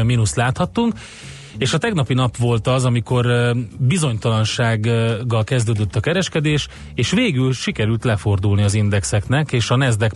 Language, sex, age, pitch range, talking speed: Hungarian, male, 30-49, 105-125 Hz, 135 wpm